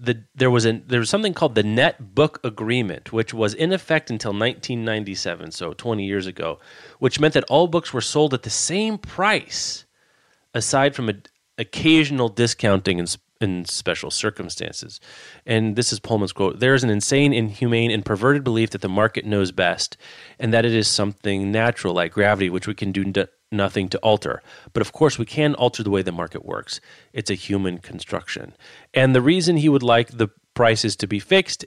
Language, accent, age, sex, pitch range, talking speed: English, American, 30-49, male, 100-125 Hz, 195 wpm